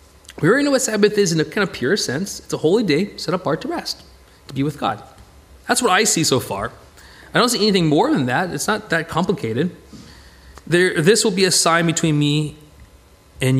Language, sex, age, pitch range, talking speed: English, male, 30-49, 135-210 Hz, 215 wpm